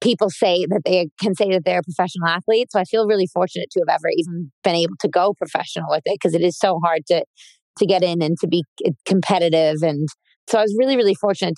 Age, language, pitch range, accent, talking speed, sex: 20-39, English, 165-200 Hz, American, 245 wpm, female